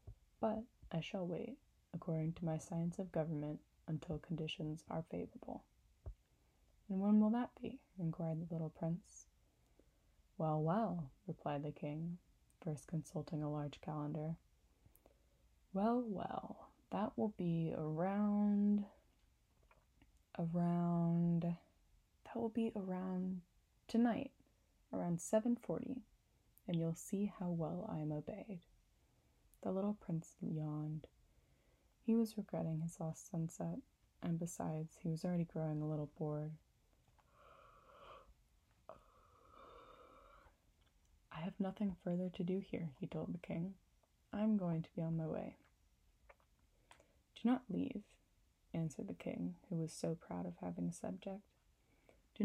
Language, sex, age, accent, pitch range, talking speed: English, female, 10-29, American, 155-200 Hz, 120 wpm